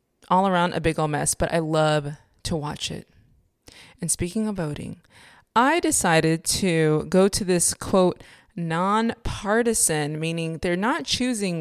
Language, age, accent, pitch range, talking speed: English, 20-39, American, 165-210 Hz, 145 wpm